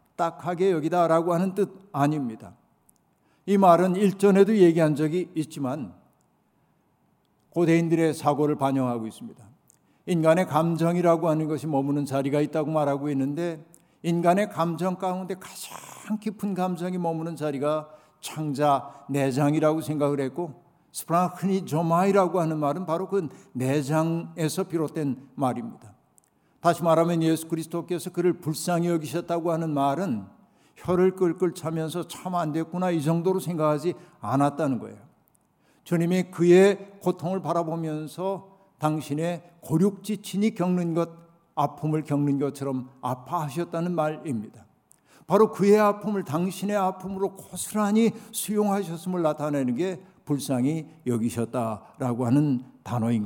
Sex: male